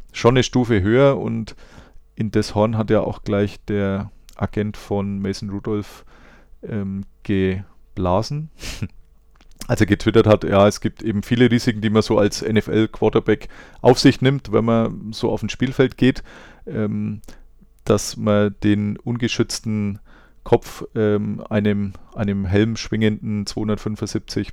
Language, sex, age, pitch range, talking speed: German, male, 30-49, 100-115 Hz, 135 wpm